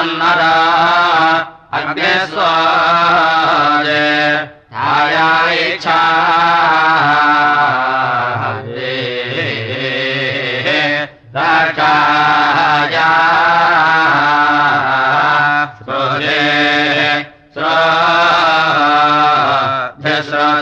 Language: Russian